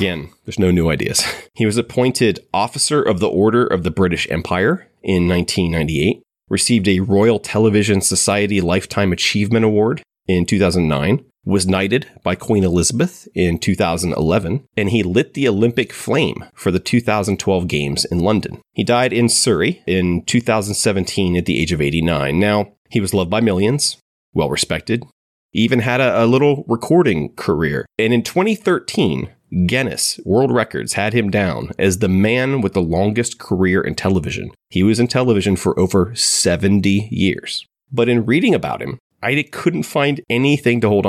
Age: 30-49